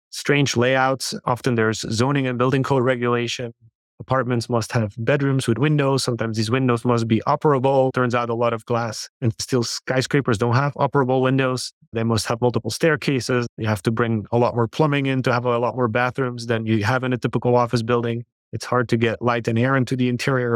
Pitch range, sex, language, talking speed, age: 115-130 Hz, male, English, 210 wpm, 30-49